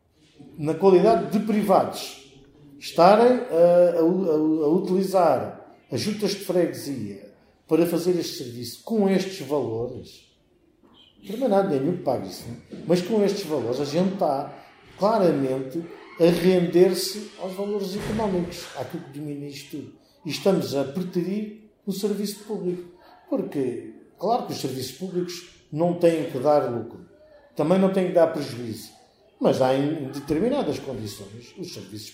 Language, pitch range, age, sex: Portuguese, 135-195 Hz, 50-69, male